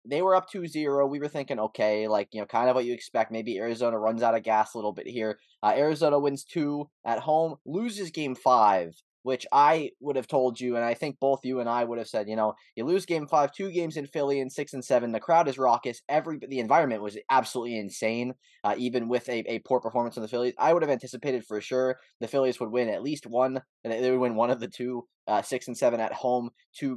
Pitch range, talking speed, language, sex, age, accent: 120-145 Hz, 250 wpm, English, male, 20-39, American